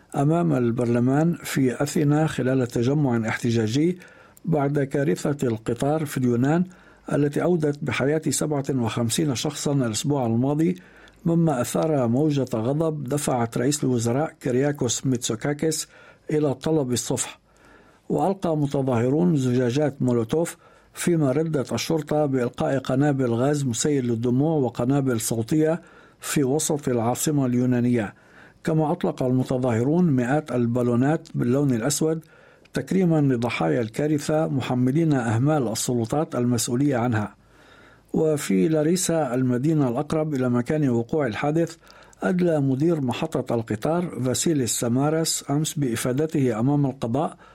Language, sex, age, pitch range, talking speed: Arabic, male, 60-79, 125-155 Hz, 105 wpm